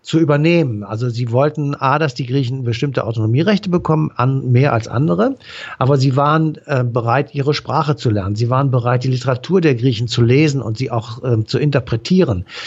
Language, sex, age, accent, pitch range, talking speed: German, male, 60-79, German, 125-160 Hz, 185 wpm